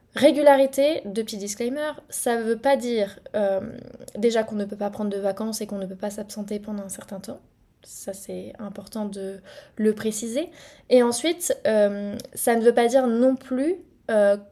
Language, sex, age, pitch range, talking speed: French, female, 20-39, 205-245 Hz, 180 wpm